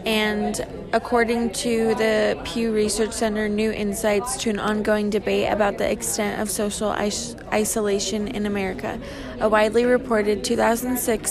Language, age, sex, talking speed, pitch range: English, 20-39, female, 135 wpm, 205-225 Hz